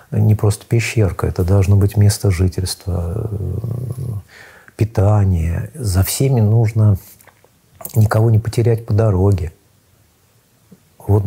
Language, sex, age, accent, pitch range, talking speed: Russian, male, 50-69, native, 95-115 Hz, 95 wpm